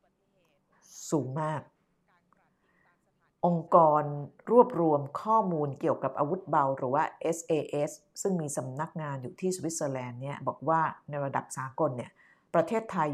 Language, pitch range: Thai, 150-195 Hz